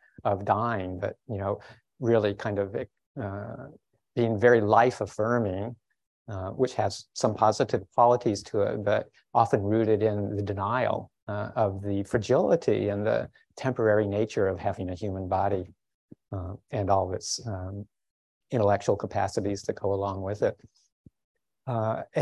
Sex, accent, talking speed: male, American, 145 wpm